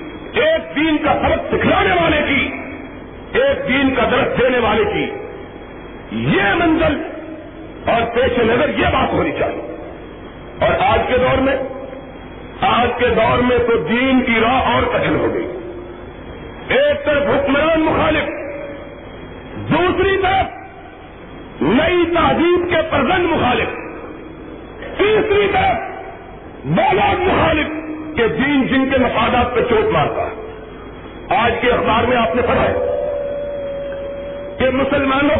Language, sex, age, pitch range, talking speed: Urdu, male, 50-69, 255-325 Hz, 125 wpm